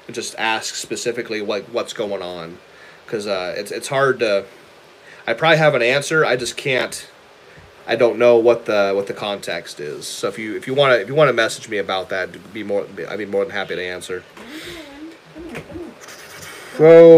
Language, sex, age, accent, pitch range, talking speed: English, male, 30-49, American, 120-165 Hz, 200 wpm